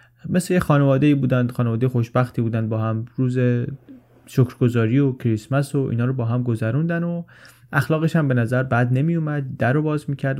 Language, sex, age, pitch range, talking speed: Persian, male, 30-49, 120-150 Hz, 160 wpm